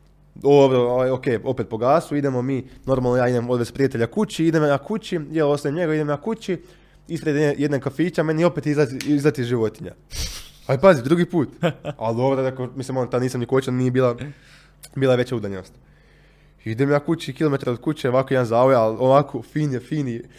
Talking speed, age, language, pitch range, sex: 195 wpm, 20-39, Croatian, 120-145 Hz, male